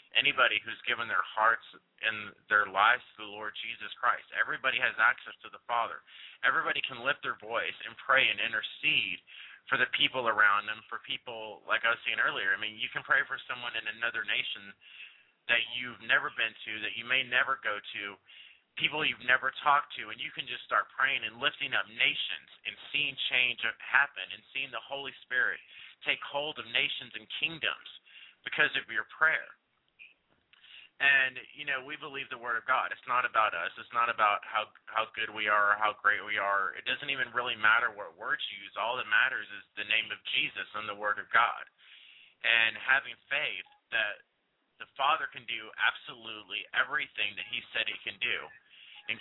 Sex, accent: male, American